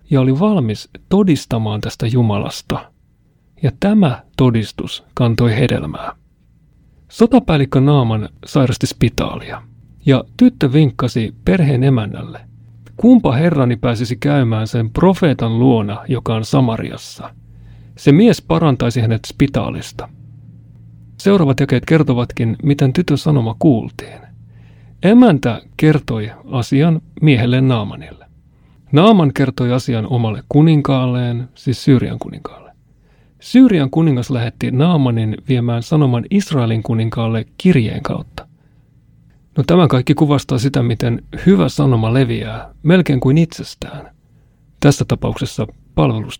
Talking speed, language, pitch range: 100 wpm, Finnish, 120-150 Hz